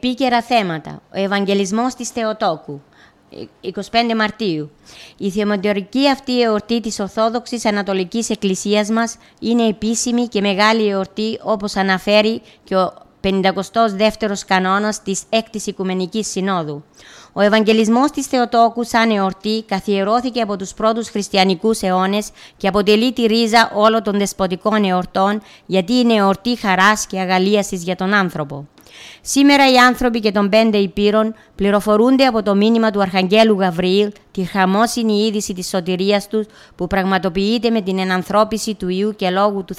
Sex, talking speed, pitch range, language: female, 135 wpm, 195-225 Hz, Greek